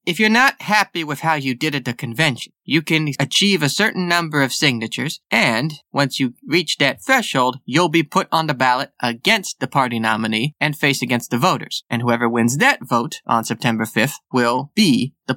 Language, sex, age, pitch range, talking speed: English, male, 20-39, 120-160 Hz, 200 wpm